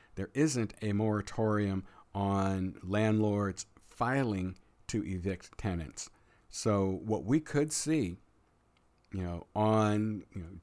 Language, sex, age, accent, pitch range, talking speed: English, male, 50-69, American, 95-110 Hz, 100 wpm